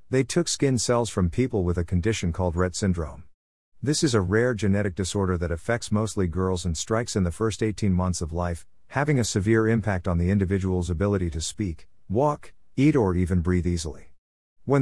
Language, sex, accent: English, male, American